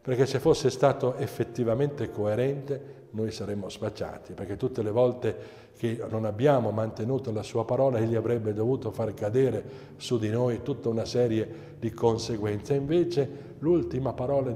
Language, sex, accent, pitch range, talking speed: Italian, male, native, 110-130 Hz, 150 wpm